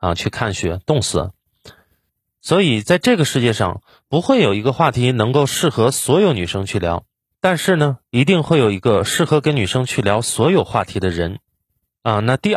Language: Chinese